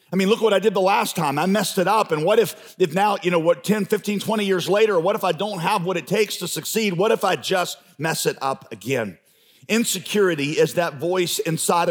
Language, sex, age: English, male, 50-69